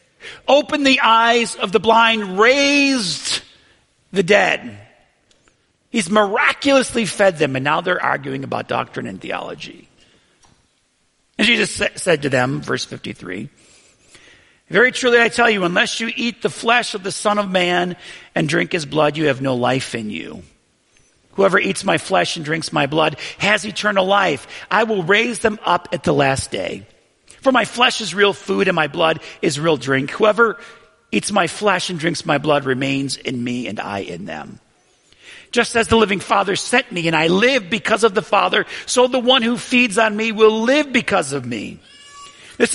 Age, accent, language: 50-69, American, English